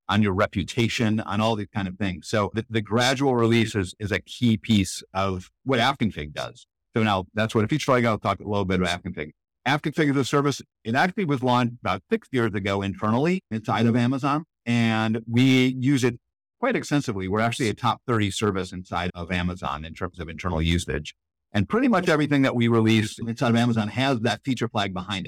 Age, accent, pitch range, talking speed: 50-69, American, 100-125 Hz, 210 wpm